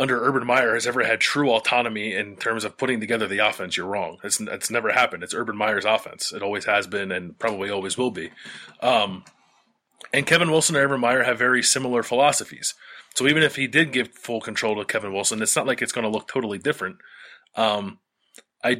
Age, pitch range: 20-39, 110-145 Hz